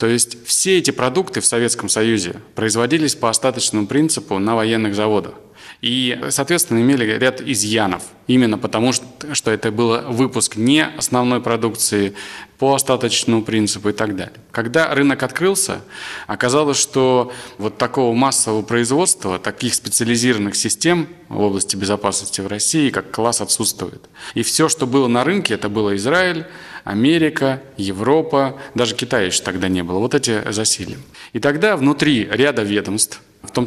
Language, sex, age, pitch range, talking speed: Russian, male, 20-39, 105-135 Hz, 145 wpm